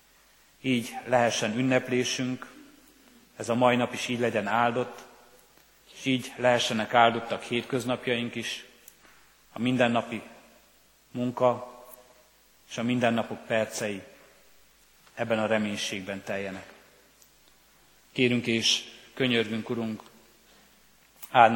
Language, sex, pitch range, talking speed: Hungarian, male, 110-125 Hz, 90 wpm